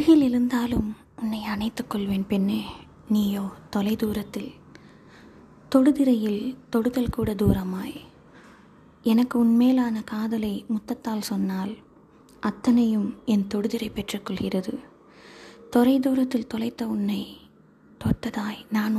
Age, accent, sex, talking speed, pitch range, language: 20-39, native, female, 65 wpm, 215-260 Hz, Tamil